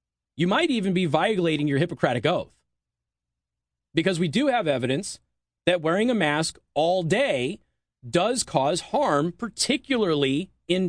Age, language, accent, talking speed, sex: 30-49, English, American, 130 wpm, male